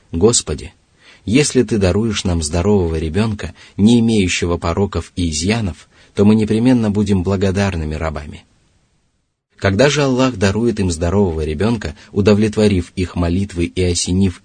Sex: male